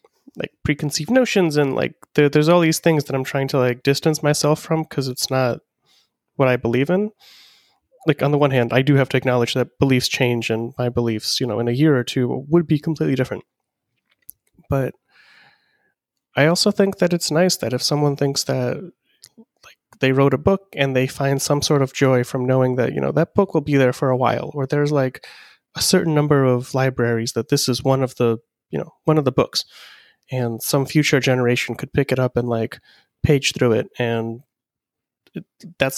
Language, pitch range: English, 130-155 Hz